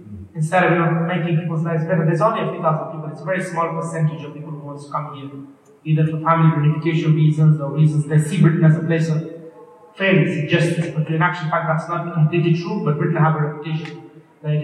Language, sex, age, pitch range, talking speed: English, male, 30-49, 155-170 Hz, 235 wpm